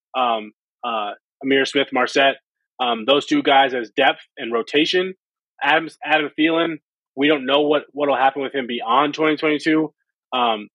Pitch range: 120-140 Hz